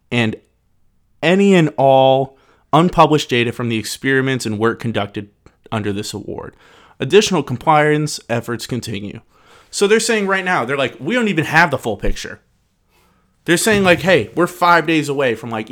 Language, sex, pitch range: English, male, 115-160 Hz